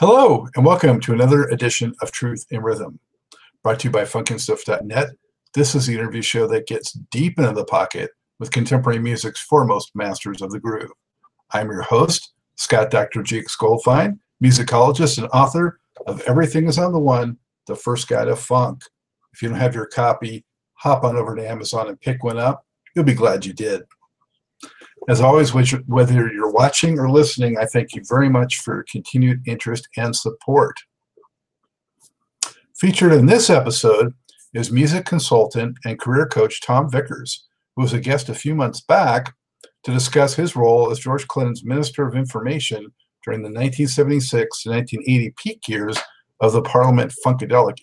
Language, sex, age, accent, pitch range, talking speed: English, male, 50-69, American, 115-145 Hz, 165 wpm